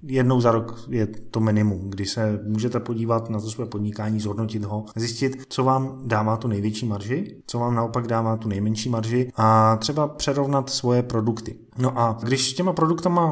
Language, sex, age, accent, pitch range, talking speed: Czech, male, 20-39, native, 110-130 Hz, 185 wpm